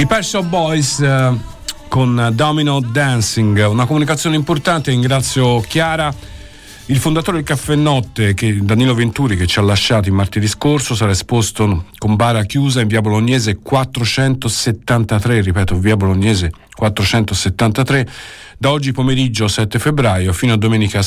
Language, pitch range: Italian, 100-130 Hz